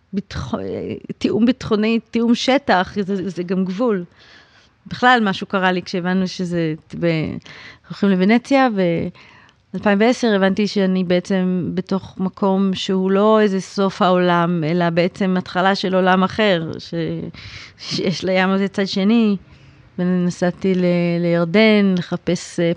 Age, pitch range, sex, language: 30-49, 175-200 Hz, female, Hebrew